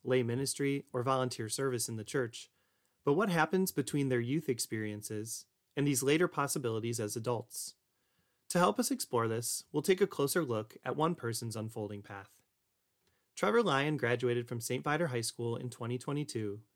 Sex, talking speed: male, 165 wpm